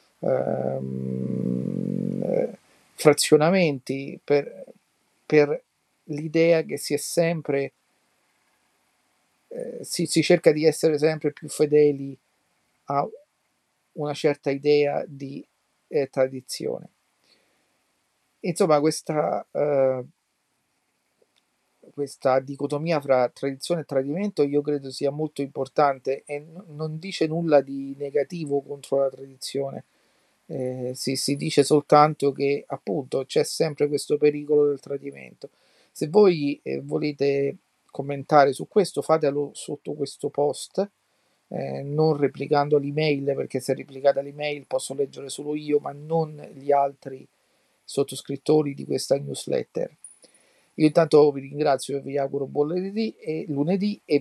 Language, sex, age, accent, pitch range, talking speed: Italian, male, 40-59, native, 140-155 Hz, 115 wpm